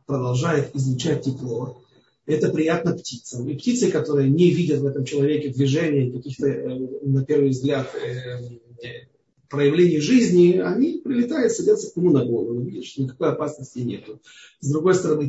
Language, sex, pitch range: Russian, male, 140-215 Hz